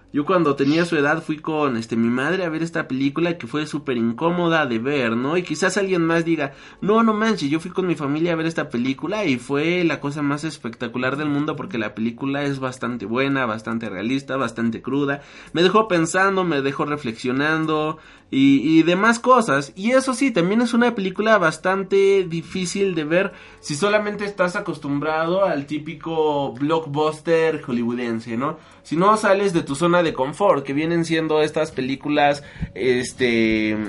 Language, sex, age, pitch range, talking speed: Spanish, male, 30-49, 140-185 Hz, 180 wpm